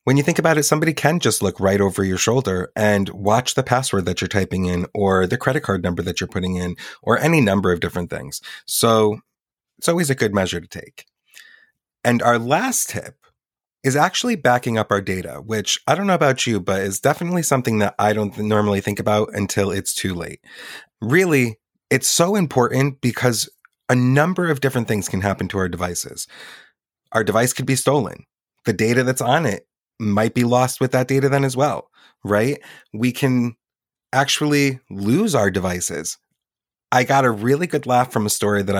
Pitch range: 100-130 Hz